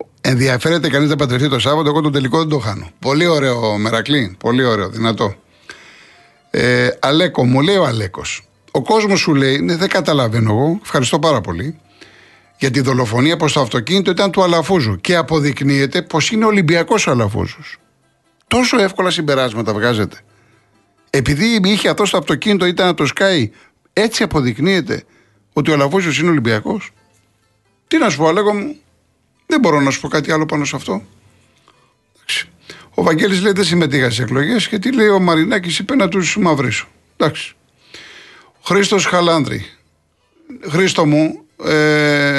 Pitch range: 130-185 Hz